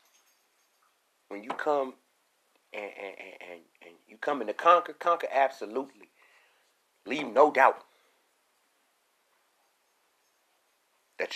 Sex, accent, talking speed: male, American, 95 wpm